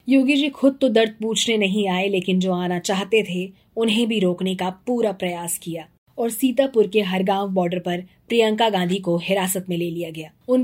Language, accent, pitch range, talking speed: Hindi, native, 180-225 Hz, 205 wpm